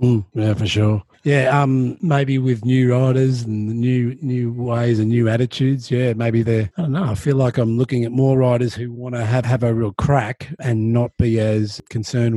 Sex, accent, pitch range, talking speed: male, Australian, 110-130 Hz, 220 wpm